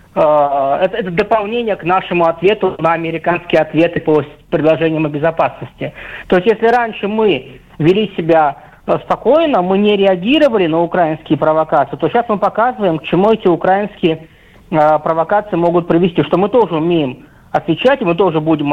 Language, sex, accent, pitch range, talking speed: Russian, male, native, 165-210 Hz, 155 wpm